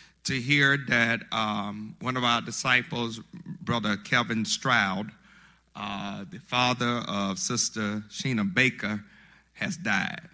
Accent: American